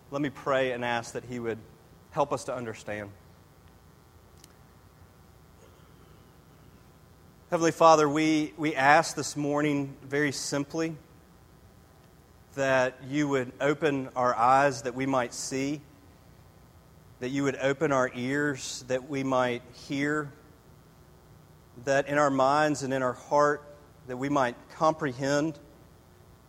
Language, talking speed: English, 120 wpm